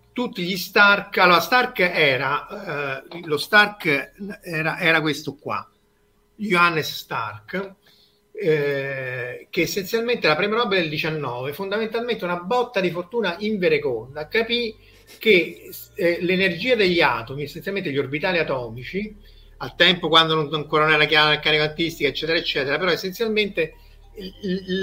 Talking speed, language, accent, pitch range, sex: 140 wpm, Italian, native, 155-205 Hz, male